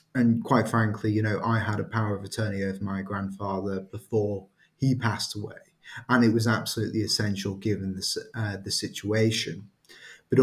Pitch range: 100-115 Hz